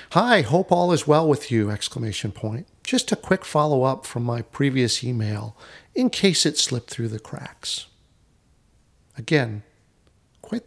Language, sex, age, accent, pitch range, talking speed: English, male, 50-69, American, 115-155 Hz, 150 wpm